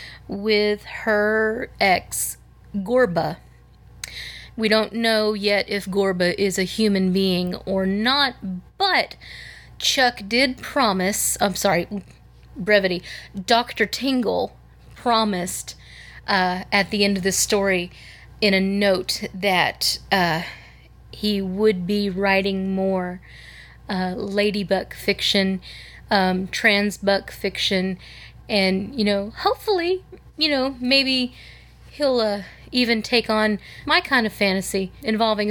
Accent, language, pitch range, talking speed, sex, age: American, English, 195-235 Hz, 110 wpm, female, 30-49